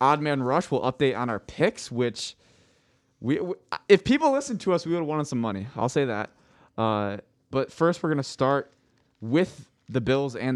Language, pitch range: English, 120-155 Hz